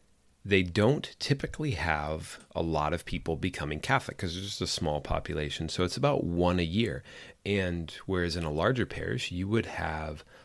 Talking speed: 180 wpm